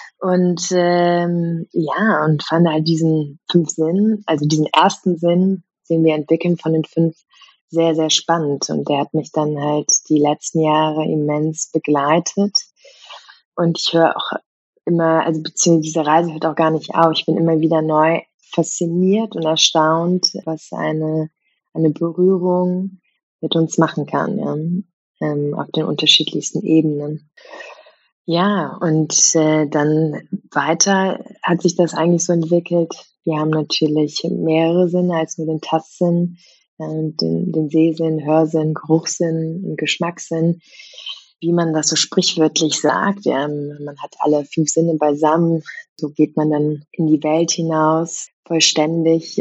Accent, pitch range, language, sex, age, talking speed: German, 155-170 Hz, German, female, 20-39, 140 wpm